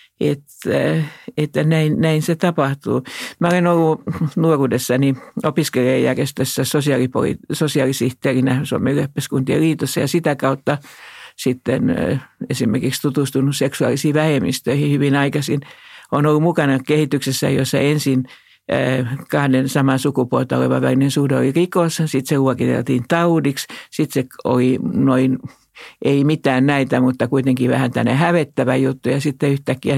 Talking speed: 120 wpm